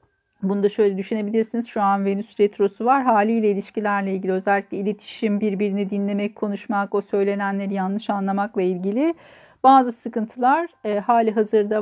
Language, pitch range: Turkish, 200-235 Hz